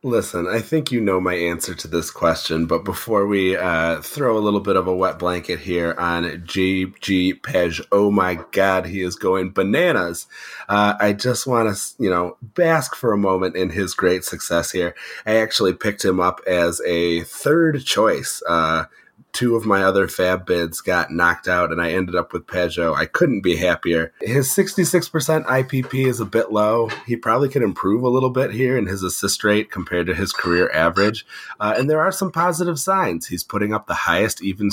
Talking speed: 200 wpm